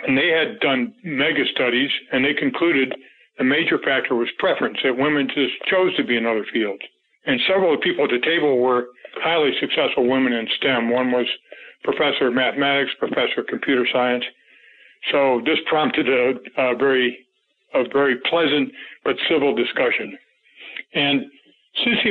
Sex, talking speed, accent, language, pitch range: male, 165 wpm, American, English, 135-180 Hz